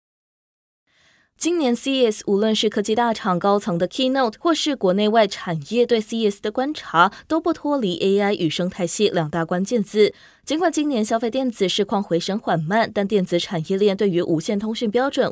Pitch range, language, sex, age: 180-250 Hz, Chinese, female, 20-39